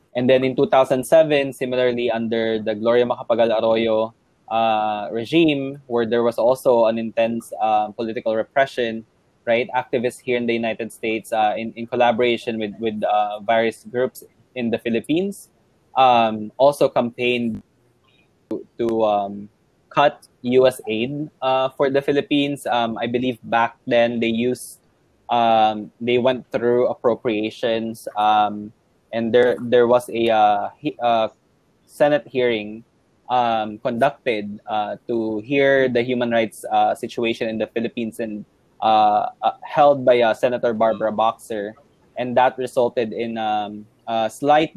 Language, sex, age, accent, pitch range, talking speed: English, male, 20-39, Filipino, 110-125 Hz, 140 wpm